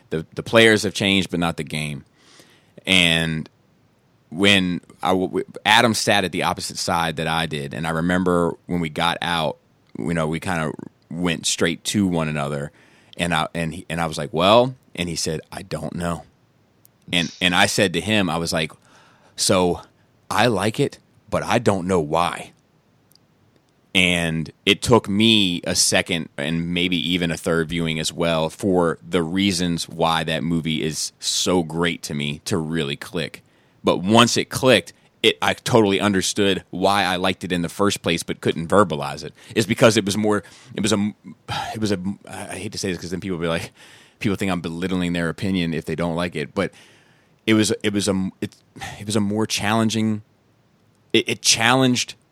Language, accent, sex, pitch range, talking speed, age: English, American, male, 80-105 Hz, 190 wpm, 30-49